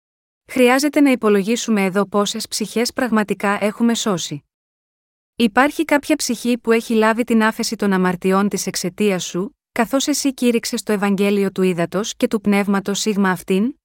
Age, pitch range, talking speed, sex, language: 20-39, 200-250 Hz, 145 wpm, female, Greek